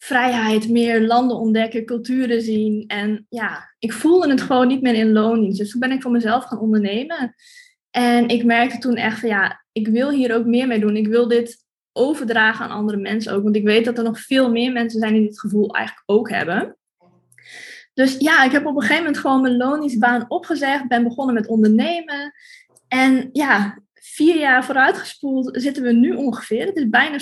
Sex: female